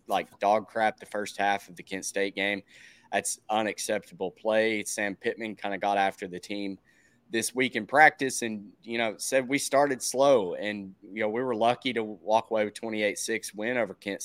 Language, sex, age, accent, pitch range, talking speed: English, male, 20-39, American, 100-120 Hz, 200 wpm